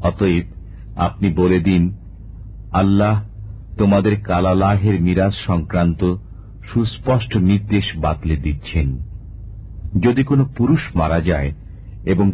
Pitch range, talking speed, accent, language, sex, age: 85-105 Hz, 95 wpm, Indian, English, male, 50-69